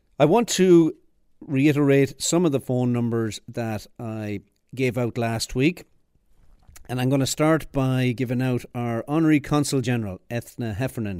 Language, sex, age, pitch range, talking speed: English, male, 50-69, 110-140 Hz, 155 wpm